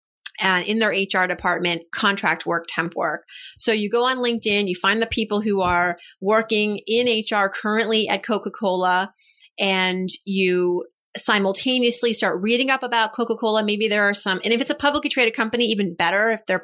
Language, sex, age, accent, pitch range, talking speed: English, female, 30-49, American, 190-230 Hz, 190 wpm